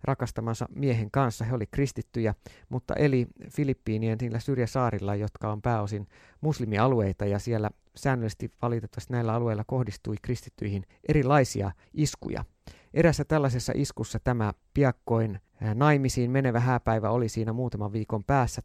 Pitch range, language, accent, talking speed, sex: 100-125 Hz, Finnish, native, 120 wpm, male